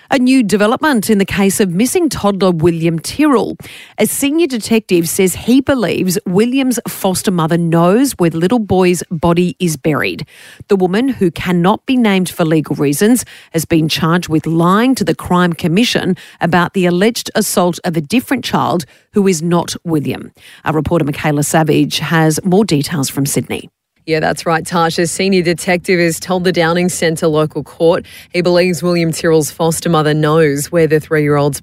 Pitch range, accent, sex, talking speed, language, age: 150-180 Hz, Australian, female, 170 wpm, English, 40-59